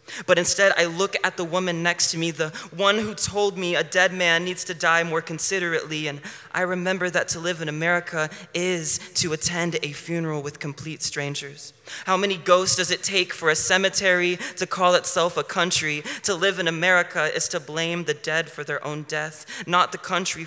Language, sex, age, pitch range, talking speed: English, male, 20-39, 155-180 Hz, 200 wpm